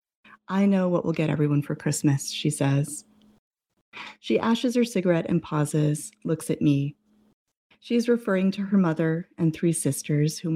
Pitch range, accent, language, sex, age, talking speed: 150-210 Hz, American, English, female, 30-49, 165 wpm